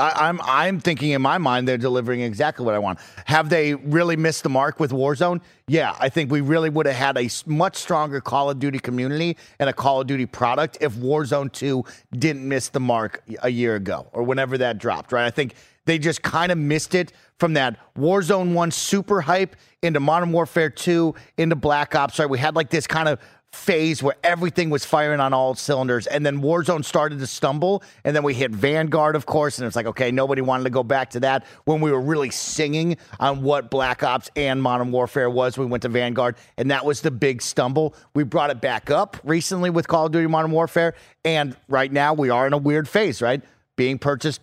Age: 30-49